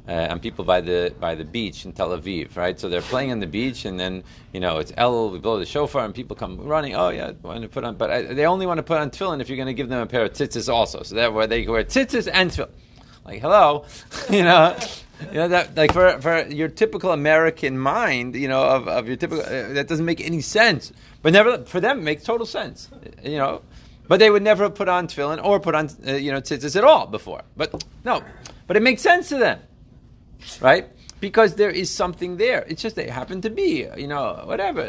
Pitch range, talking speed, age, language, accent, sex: 120-185 Hz, 245 wpm, 30-49, English, American, male